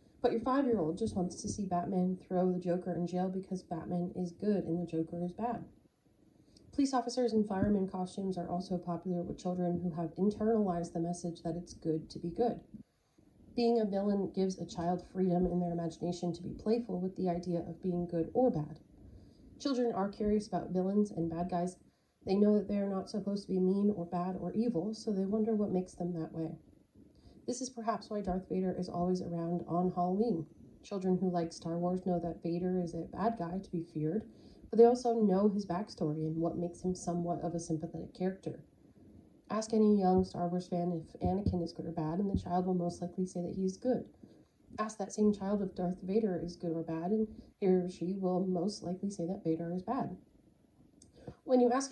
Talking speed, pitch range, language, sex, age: 215 wpm, 175-205 Hz, English, female, 30-49